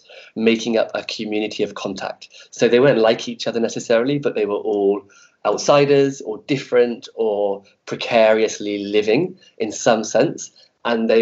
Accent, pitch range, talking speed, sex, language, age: British, 105-130 Hz, 150 wpm, male, English, 20-39